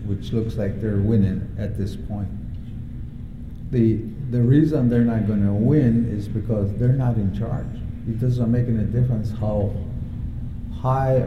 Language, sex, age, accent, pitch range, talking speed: English, male, 50-69, American, 105-120 Hz, 155 wpm